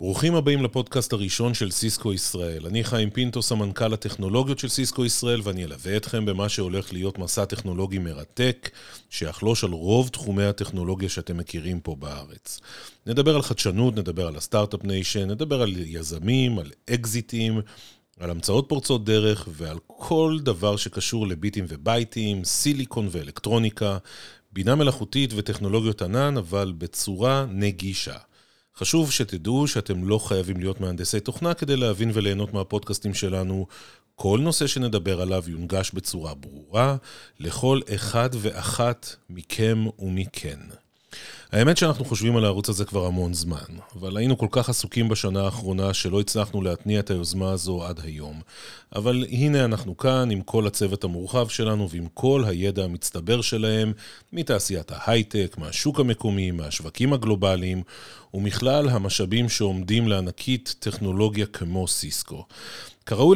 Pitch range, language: 95-120 Hz, Hebrew